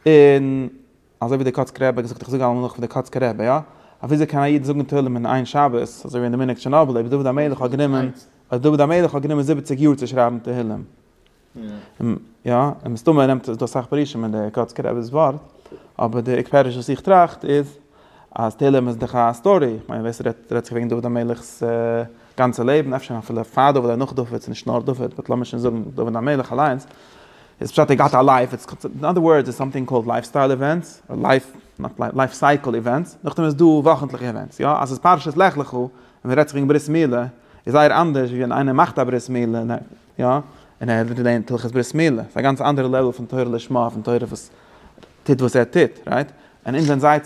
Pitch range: 120-145 Hz